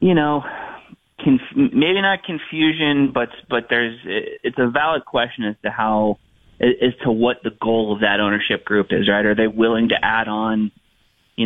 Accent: American